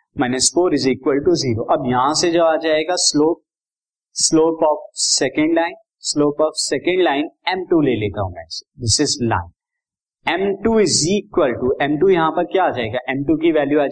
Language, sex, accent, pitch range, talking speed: Hindi, male, native, 145-210 Hz, 60 wpm